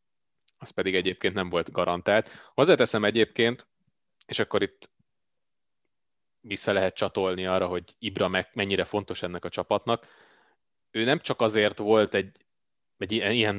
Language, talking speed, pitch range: Hungarian, 135 wpm, 95-115 Hz